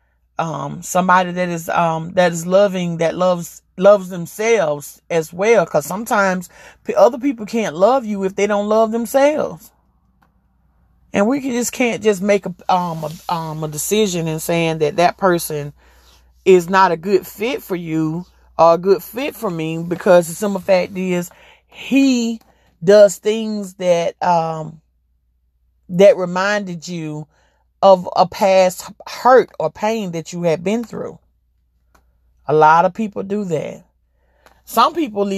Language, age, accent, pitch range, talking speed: English, 40-59, American, 160-200 Hz, 150 wpm